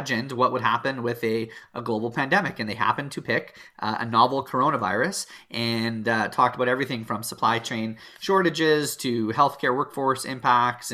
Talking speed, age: 165 wpm, 30-49